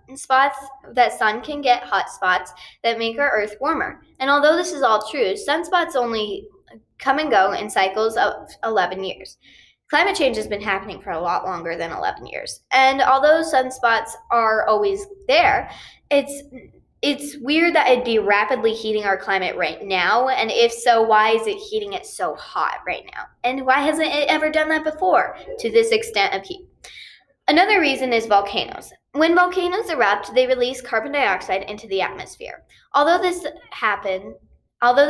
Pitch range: 215-325 Hz